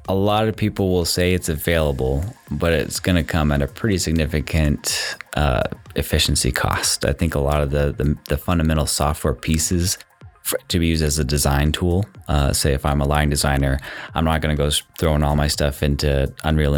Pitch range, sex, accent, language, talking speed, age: 70-80 Hz, male, American, English, 205 wpm, 20-39